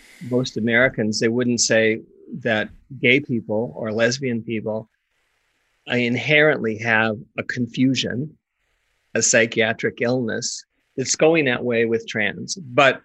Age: 50-69